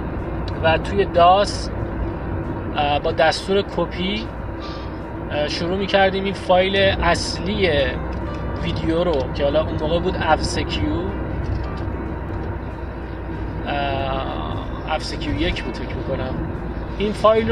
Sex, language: male, Persian